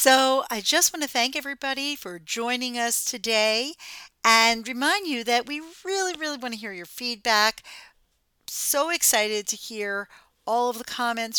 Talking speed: 155 wpm